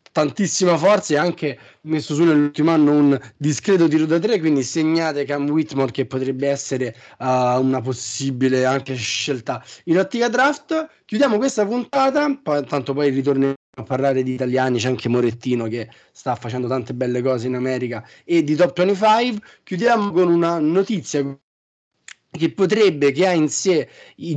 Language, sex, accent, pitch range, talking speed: Italian, male, native, 130-165 Hz, 160 wpm